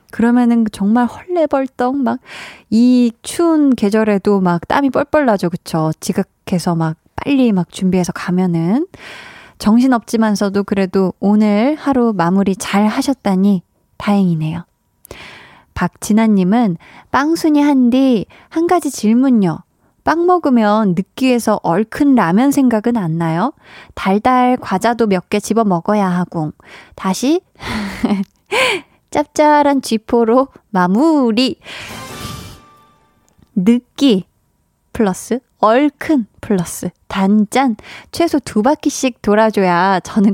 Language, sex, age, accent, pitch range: Korean, female, 20-39, native, 195-270 Hz